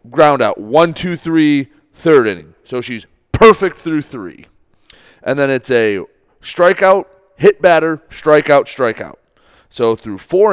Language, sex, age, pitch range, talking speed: English, male, 30-49, 115-165 Hz, 135 wpm